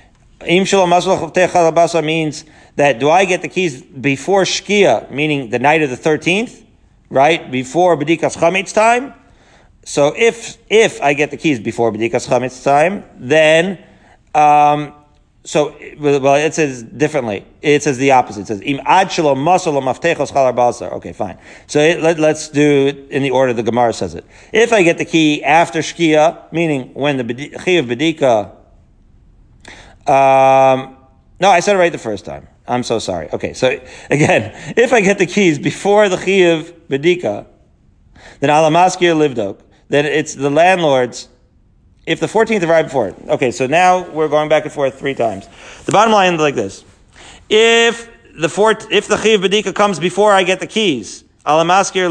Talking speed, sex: 165 wpm, male